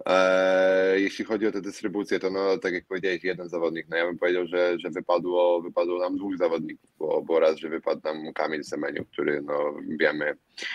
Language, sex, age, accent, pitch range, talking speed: Polish, male, 20-39, native, 80-90 Hz, 190 wpm